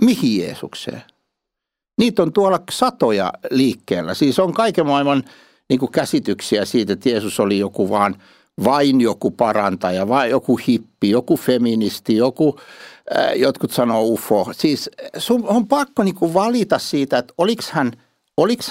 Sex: male